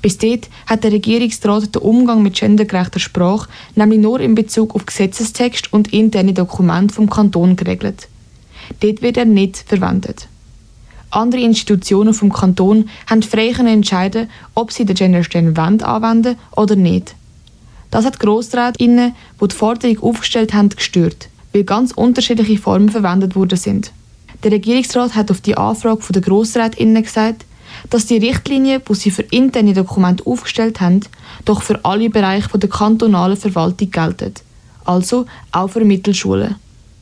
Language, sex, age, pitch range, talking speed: German, female, 20-39, 195-225 Hz, 150 wpm